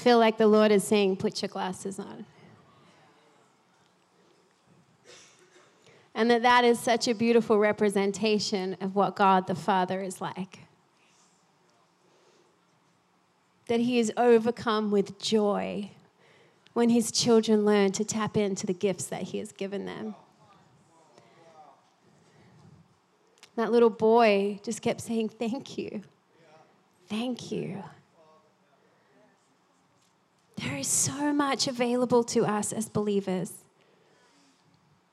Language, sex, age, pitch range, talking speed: English, female, 30-49, 190-230 Hz, 110 wpm